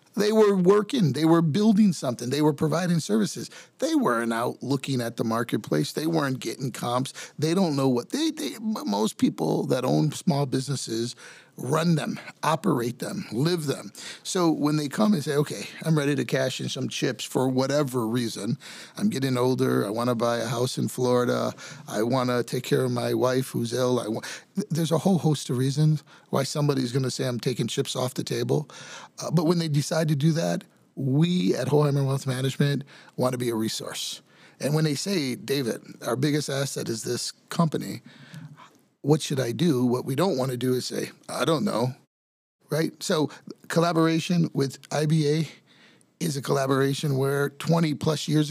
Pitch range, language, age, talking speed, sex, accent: 125-165 Hz, English, 40-59, 190 wpm, male, American